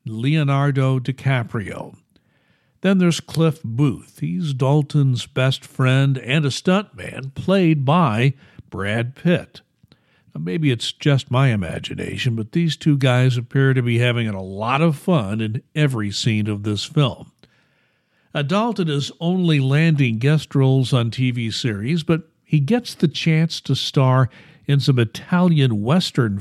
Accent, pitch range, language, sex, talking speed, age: American, 120-155 Hz, English, male, 140 wpm, 60-79